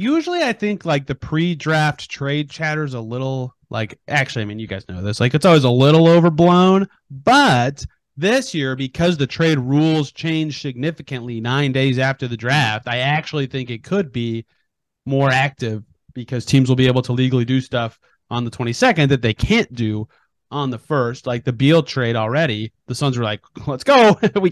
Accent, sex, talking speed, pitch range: American, male, 190 wpm, 125-165 Hz